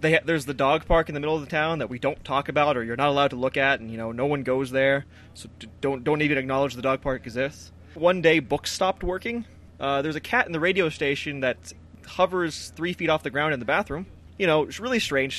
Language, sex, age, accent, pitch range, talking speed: English, male, 20-39, American, 125-160 Hz, 260 wpm